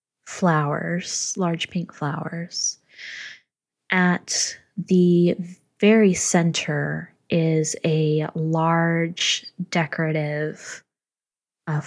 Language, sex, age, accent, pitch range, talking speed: English, female, 20-39, American, 150-175 Hz, 65 wpm